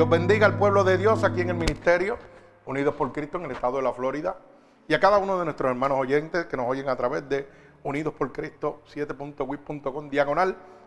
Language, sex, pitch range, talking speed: Spanish, male, 140-195 Hz, 205 wpm